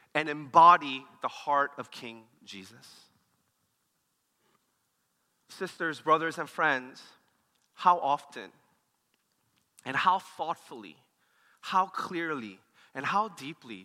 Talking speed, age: 90 wpm, 30-49